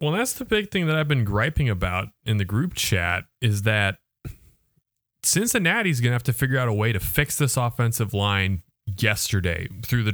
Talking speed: 200 wpm